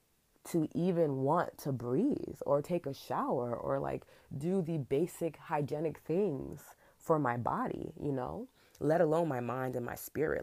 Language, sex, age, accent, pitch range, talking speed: English, female, 20-39, American, 130-165 Hz, 160 wpm